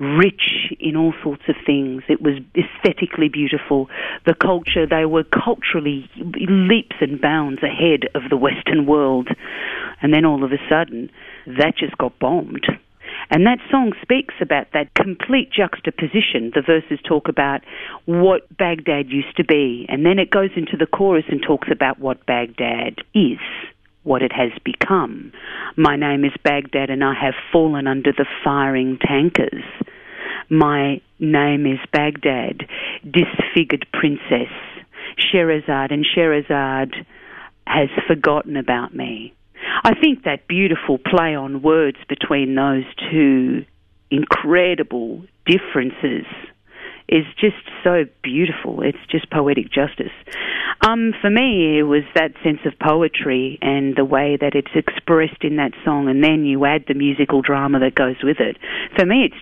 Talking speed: 145 wpm